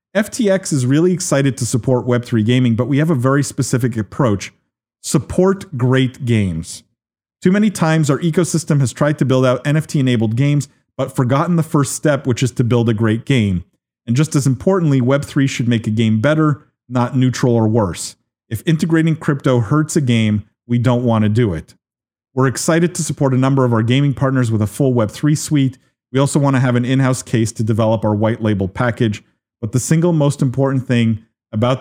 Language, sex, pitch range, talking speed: English, male, 115-140 Hz, 195 wpm